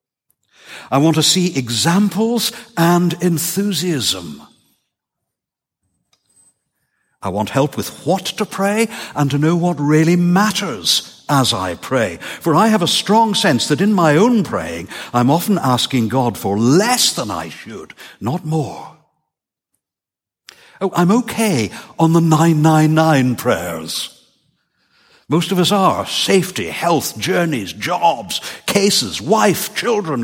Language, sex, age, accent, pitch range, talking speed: English, male, 60-79, British, 150-215 Hz, 125 wpm